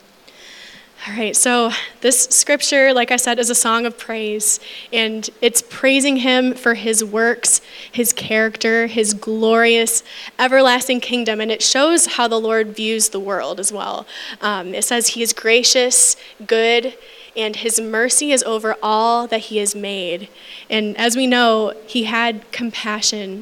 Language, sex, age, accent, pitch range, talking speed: English, female, 10-29, American, 220-245 Hz, 155 wpm